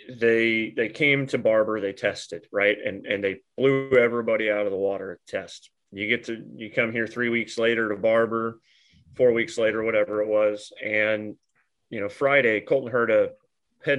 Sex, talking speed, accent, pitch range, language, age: male, 190 wpm, American, 105-130 Hz, English, 30-49